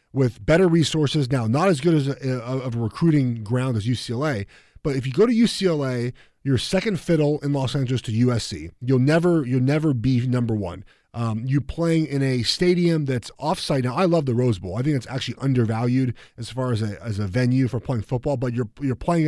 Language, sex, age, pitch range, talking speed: English, male, 30-49, 120-150 Hz, 220 wpm